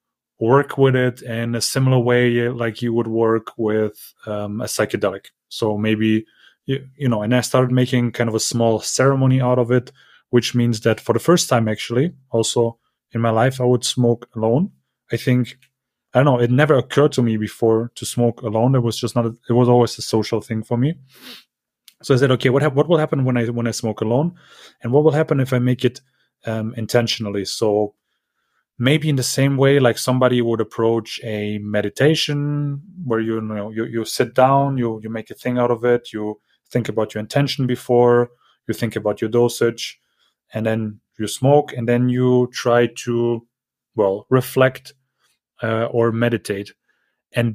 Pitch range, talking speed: 115-130 Hz, 190 wpm